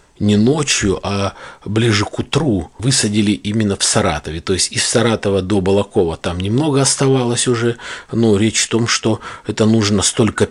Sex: male